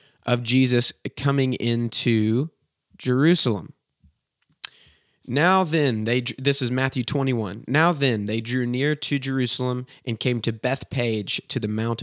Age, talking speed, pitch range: 20-39, 130 wpm, 115-135 Hz